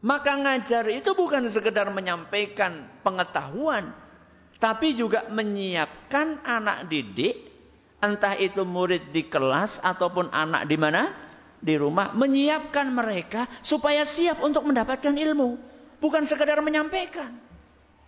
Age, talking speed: 50-69, 110 wpm